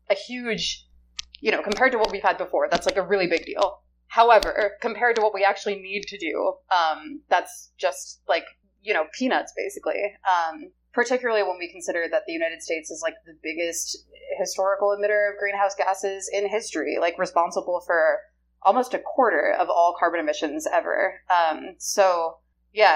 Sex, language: female, English